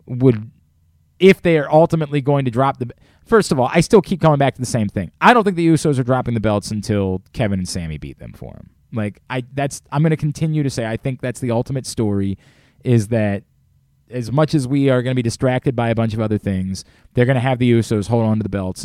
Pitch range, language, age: 100-135 Hz, English, 30-49